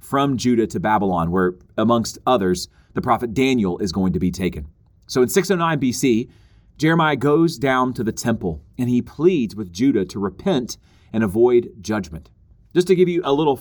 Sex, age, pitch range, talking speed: male, 30-49, 100-140 Hz, 180 wpm